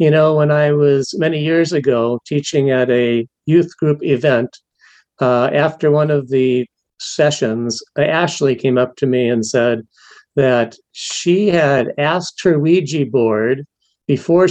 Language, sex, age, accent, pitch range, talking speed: English, male, 50-69, American, 130-155 Hz, 145 wpm